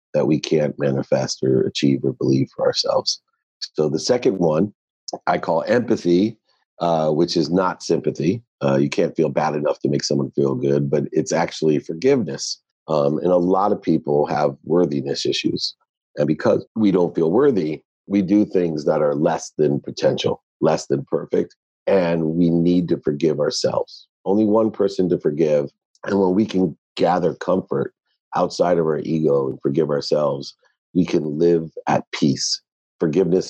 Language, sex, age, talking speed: English, male, 50-69, 165 wpm